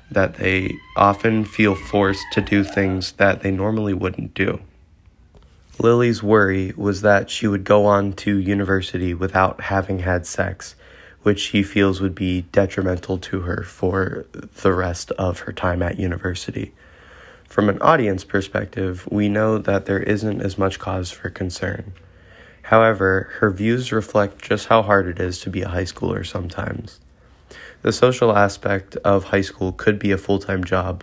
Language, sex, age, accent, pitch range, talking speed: English, male, 20-39, American, 95-105 Hz, 160 wpm